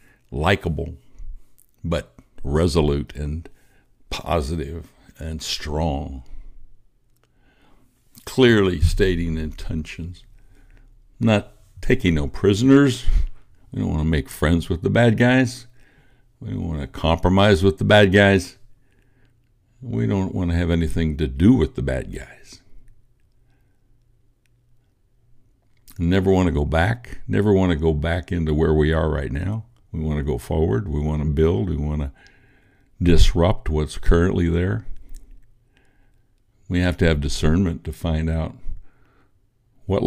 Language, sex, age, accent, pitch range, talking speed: English, male, 60-79, American, 85-120 Hz, 130 wpm